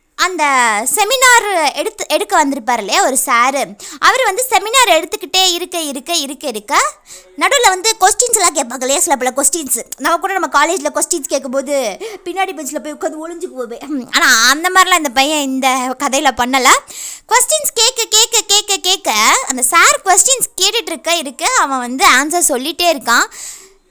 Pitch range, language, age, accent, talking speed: 265-375 Hz, Tamil, 20-39, native, 150 wpm